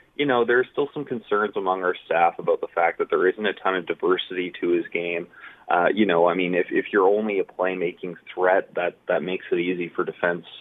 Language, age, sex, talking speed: English, 30-49, male, 230 wpm